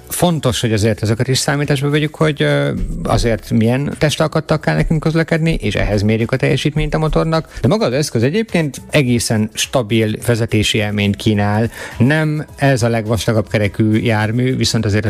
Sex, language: male, Hungarian